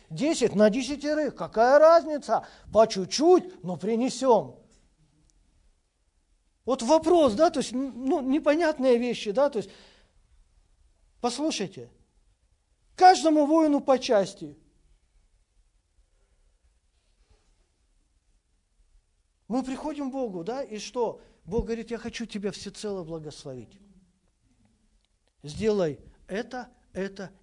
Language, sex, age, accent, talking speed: Russian, male, 50-69, native, 90 wpm